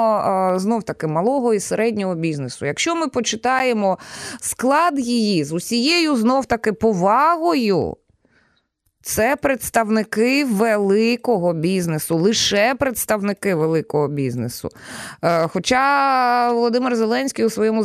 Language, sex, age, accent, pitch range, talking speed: Ukrainian, female, 20-39, native, 175-235 Hz, 90 wpm